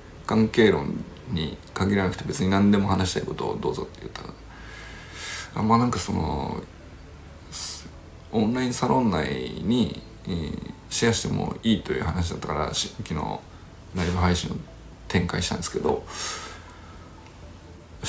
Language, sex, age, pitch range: Japanese, male, 50-69, 85-110 Hz